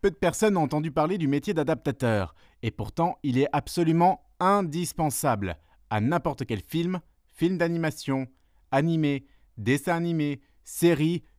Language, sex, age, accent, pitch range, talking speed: French, male, 30-49, French, 110-155 Hz, 130 wpm